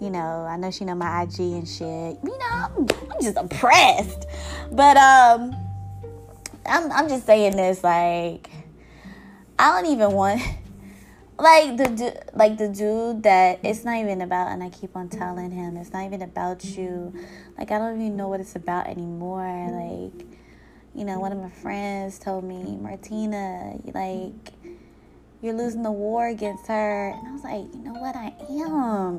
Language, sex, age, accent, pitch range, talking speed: English, female, 20-39, American, 175-245 Hz, 175 wpm